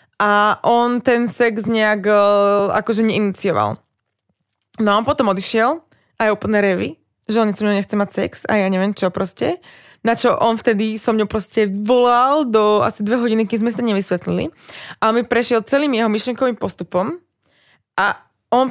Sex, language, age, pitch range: female, Slovak, 20-39, 200-240 Hz